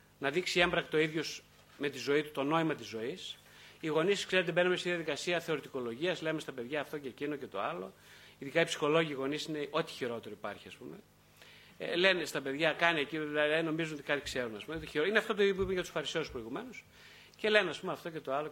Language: Greek